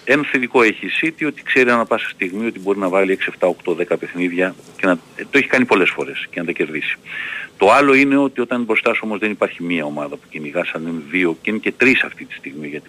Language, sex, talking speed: Greek, male, 250 wpm